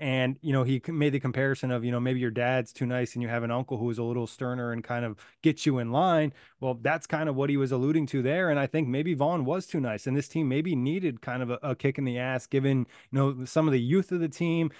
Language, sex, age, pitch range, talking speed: English, male, 20-39, 125-145 Hz, 295 wpm